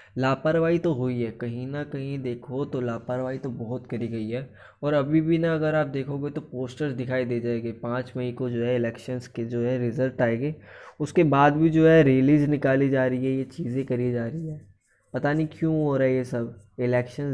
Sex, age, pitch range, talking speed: male, 20-39, 120-145 Hz, 220 wpm